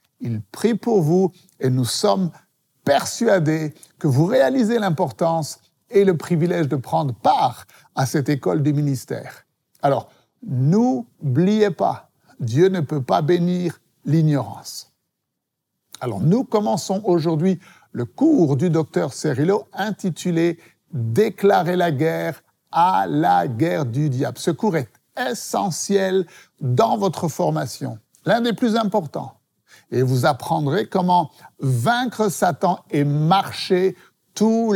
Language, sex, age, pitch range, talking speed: French, male, 60-79, 140-195 Hz, 125 wpm